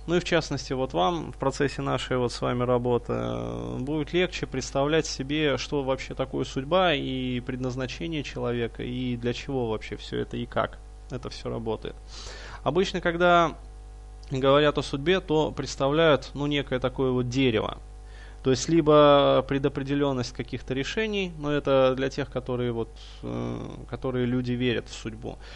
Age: 20-39